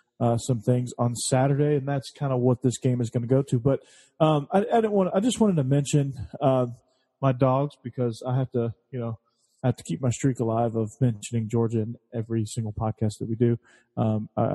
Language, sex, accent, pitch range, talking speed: English, male, American, 115-130 Hz, 225 wpm